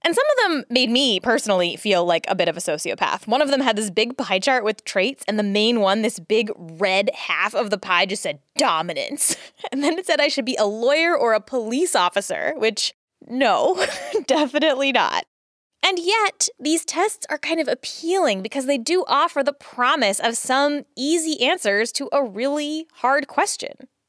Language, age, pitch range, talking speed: English, 10-29, 235-340 Hz, 195 wpm